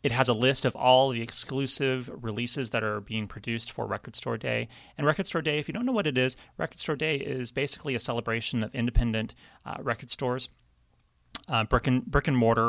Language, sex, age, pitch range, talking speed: English, male, 30-49, 115-160 Hz, 200 wpm